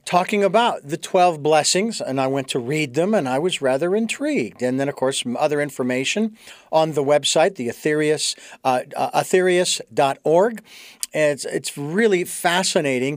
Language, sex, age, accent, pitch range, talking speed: English, male, 50-69, American, 155-210 Hz, 155 wpm